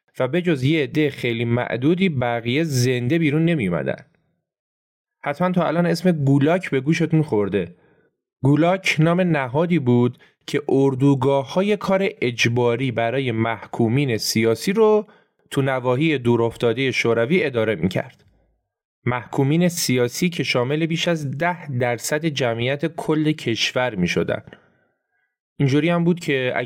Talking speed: 120 wpm